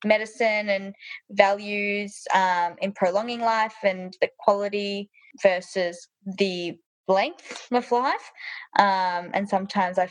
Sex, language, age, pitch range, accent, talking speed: female, English, 20-39, 175-205 Hz, Australian, 115 wpm